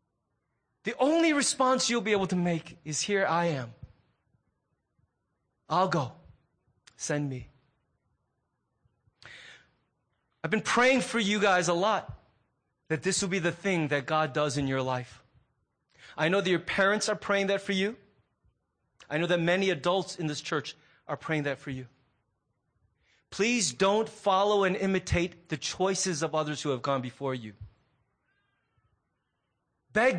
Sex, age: male, 30-49